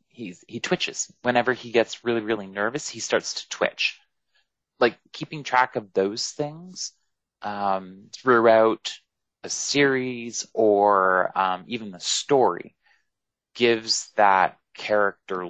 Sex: male